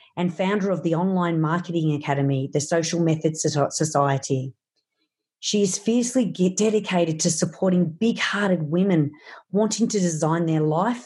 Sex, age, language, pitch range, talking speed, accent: female, 40-59, English, 155-195 Hz, 130 wpm, Australian